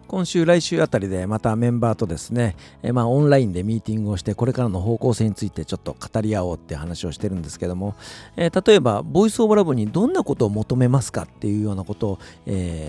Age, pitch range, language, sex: 50-69, 90-125 Hz, Japanese, male